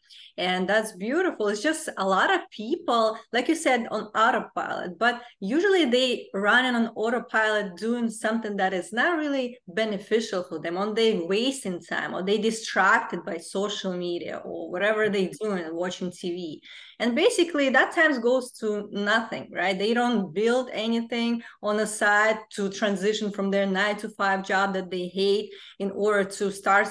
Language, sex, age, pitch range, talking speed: English, female, 20-39, 195-250 Hz, 170 wpm